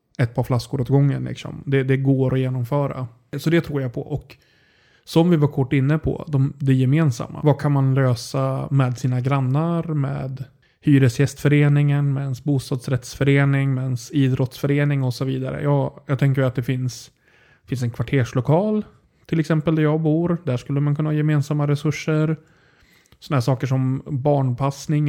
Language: English